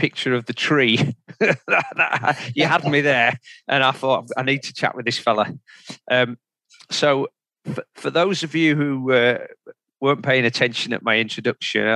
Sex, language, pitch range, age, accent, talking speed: male, English, 120-145 Hz, 40-59, British, 165 wpm